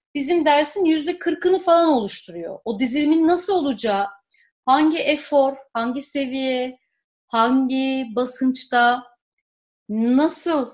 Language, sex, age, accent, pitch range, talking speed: Turkish, female, 40-59, native, 245-320 Hz, 95 wpm